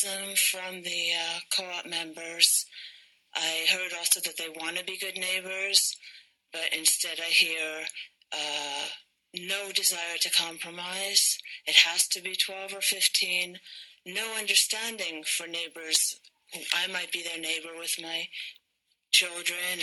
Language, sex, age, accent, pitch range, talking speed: English, female, 40-59, American, 170-210 Hz, 130 wpm